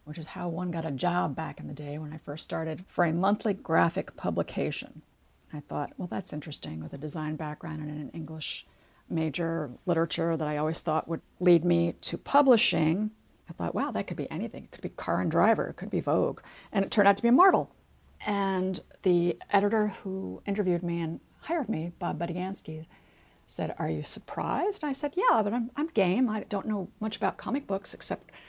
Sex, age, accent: female, 50-69, American